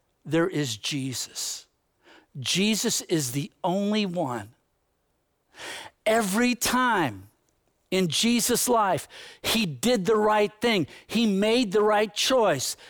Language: English